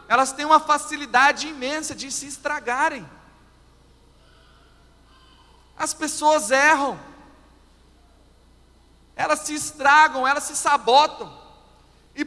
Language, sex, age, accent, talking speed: Portuguese, male, 40-59, Brazilian, 90 wpm